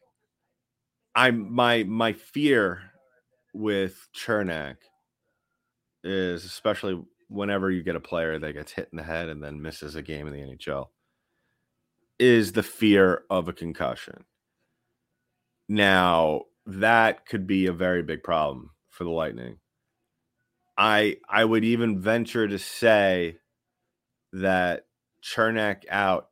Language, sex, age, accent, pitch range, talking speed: English, male, 30-49, American, 85-105 Hz, 125 wpm